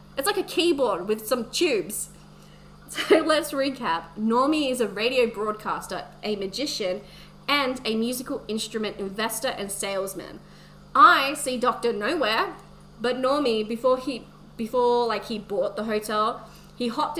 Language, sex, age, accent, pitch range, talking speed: English, female, 20-39, Australian, 195-250 Hz, 140 wpm